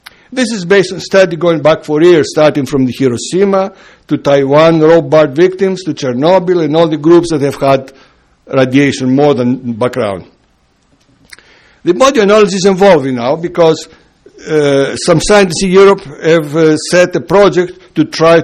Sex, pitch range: male, 145-195 Hz